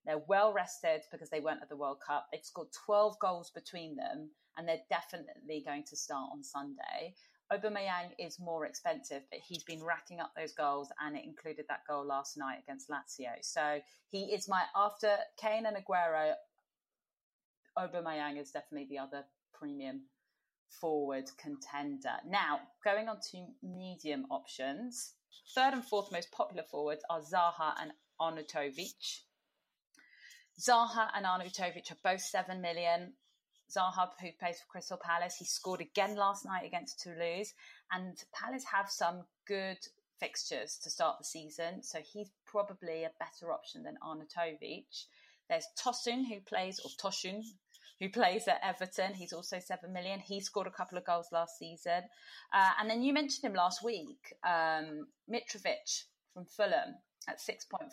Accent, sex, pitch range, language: British, female, 160-210 Hz, English